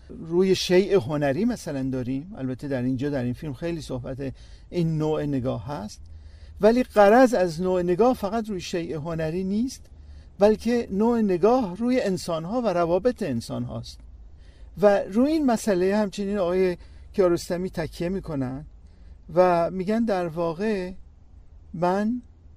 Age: 50-69